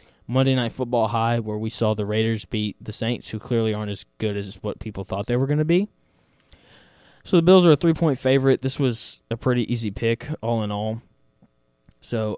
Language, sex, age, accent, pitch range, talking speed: English, male, 10-29, American, 105-130 Hz, 210 wpm